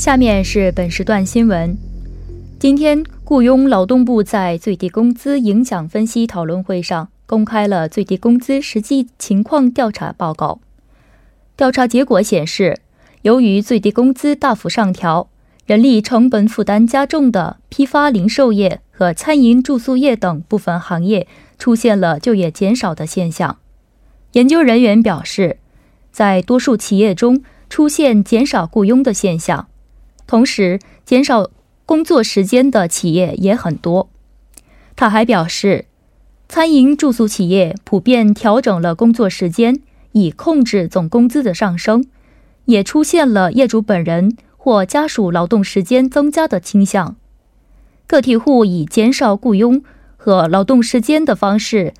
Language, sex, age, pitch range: Korean, female, 20-39, 190-255 Hz